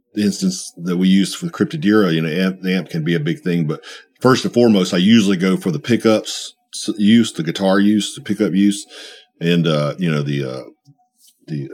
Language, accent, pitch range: English, American, 85-115 Hz